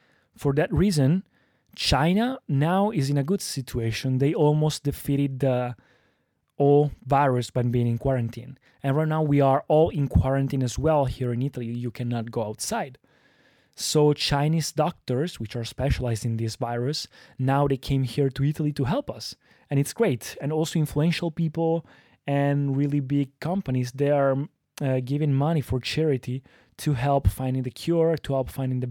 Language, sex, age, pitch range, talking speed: Italian, male, 20-39, 125-150 Hz, 170 wpm